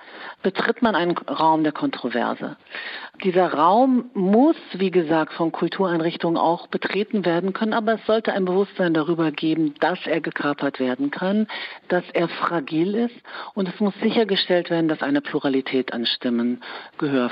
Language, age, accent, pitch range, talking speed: German, 50-69, German, 150-200 Hz, 150 wpm